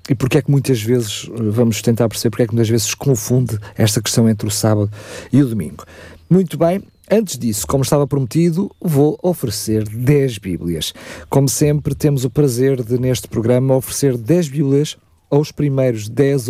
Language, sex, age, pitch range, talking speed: Portuguese, male, 50-69, 115-150 Hz, 175 wpm